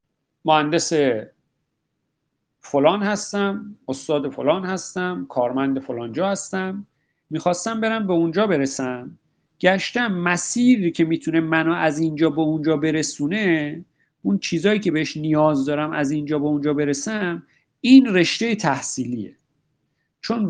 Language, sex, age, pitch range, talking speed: Persian, male, 50-69, 150-190 Hz, 115 wpm